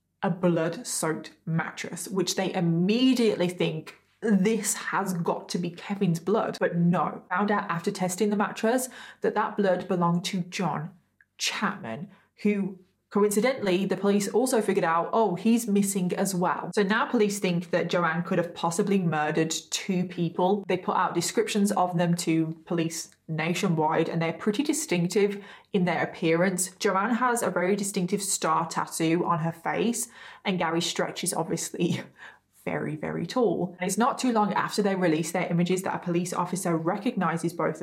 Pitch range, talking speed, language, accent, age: 170-205 Hz, 160 wpm, English, British, 20-39